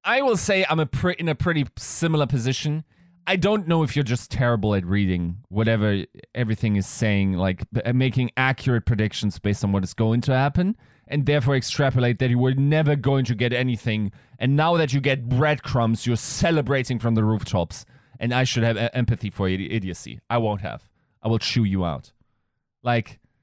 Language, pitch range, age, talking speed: English, 100-130 Hz, 30-49, 185 wpm